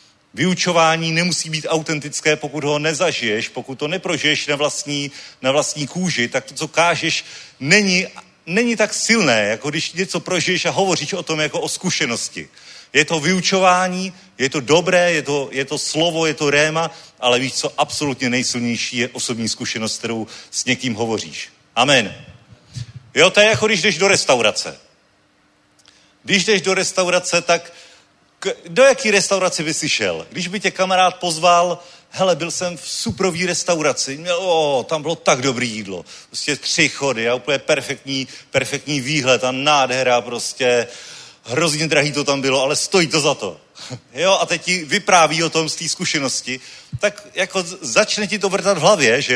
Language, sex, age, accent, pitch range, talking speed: Czech, male, 40-59, native, 135-180 Hz, 165 wpm